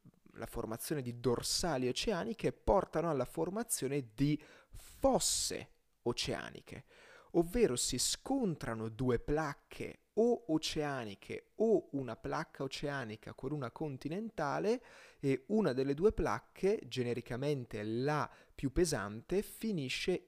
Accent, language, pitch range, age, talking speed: native, Italian, 120-180 Hz, 30-49, 105 wpm